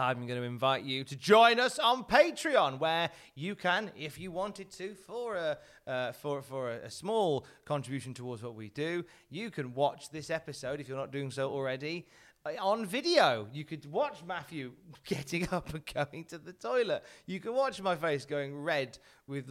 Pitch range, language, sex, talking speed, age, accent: 130-175 Hz, English, male, 190 wpm, 30-49, British